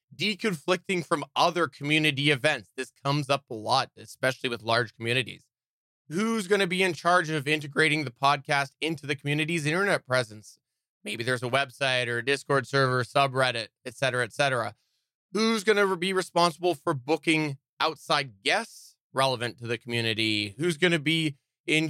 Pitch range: 130-165 Hz